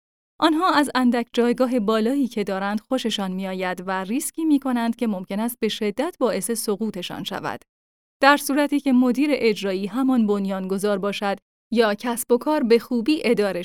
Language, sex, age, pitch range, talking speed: Persian, female, 10-29, 205-275 Hz, 165 wpm